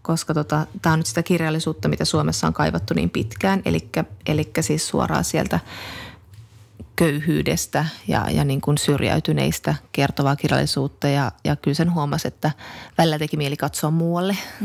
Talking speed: 150 wpm